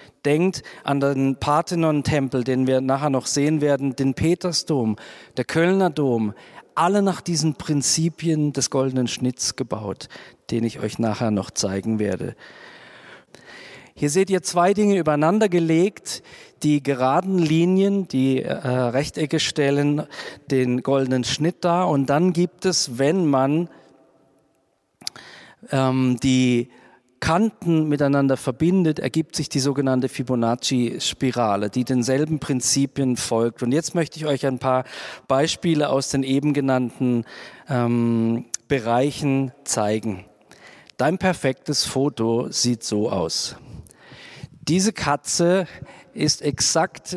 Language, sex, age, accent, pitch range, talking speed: German, male, 40-59, German, 125-155 Hz, 120 wpm